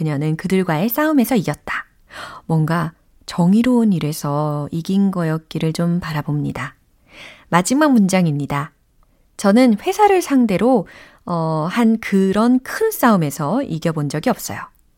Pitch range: 155-255 Hz